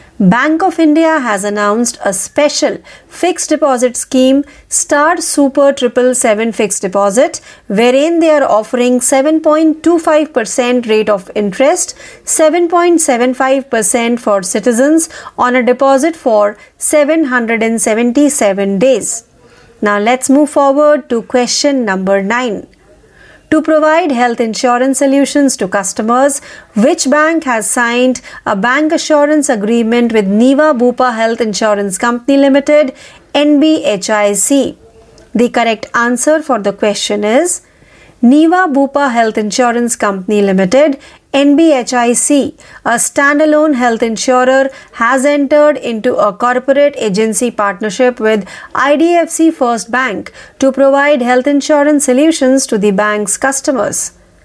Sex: female